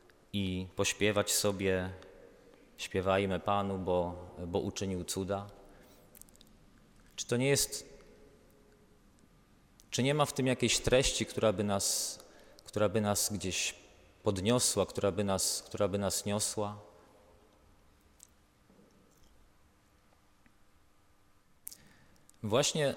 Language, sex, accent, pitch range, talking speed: Polish, male, native, 95-115 Hz, 95 wpm